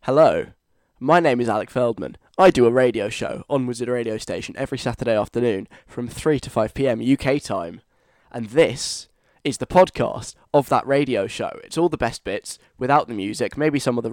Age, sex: 10-29, male